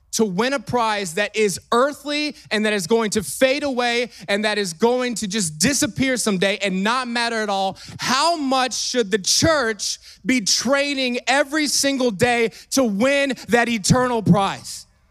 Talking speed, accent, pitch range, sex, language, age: 165 wpm, American, 205-275 Hz, male, English, 20-39